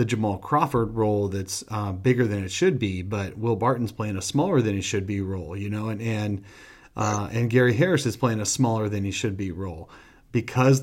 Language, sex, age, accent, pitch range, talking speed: English, male, 40-59, American, 100-115 Hz, 220 wpm